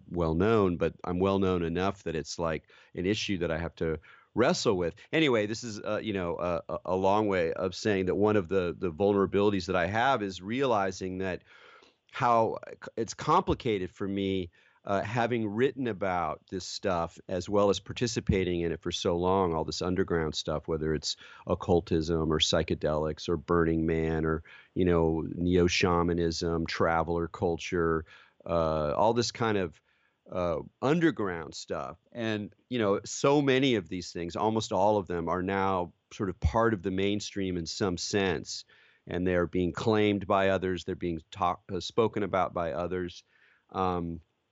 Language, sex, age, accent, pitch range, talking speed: English, male, 40-59, American, 85-110 Hz, 165 wpm